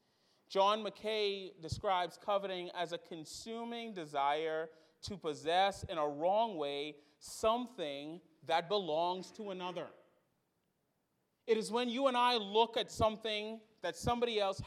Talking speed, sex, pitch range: 125 wpm, male, 175-245 Hz